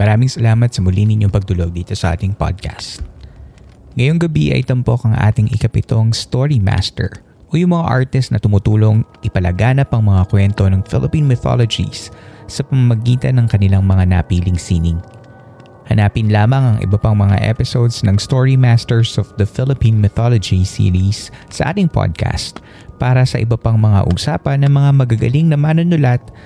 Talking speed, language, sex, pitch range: 150 wpm, Filipino, male, 100-125 Hz